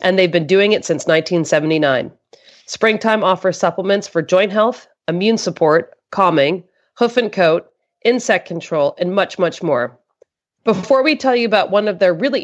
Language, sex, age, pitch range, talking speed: English, female, 30-49, 170-225 Hz, 165 wpm